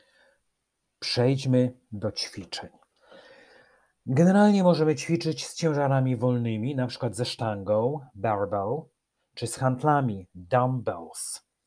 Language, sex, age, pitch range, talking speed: Polish, male, 40-59, 115-150 Hz, 95 wpm